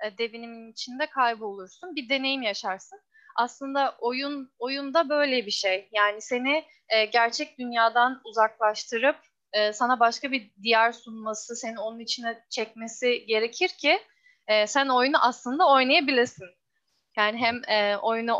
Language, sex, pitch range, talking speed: Turkish, female, 210-270 Hz, 125 wpm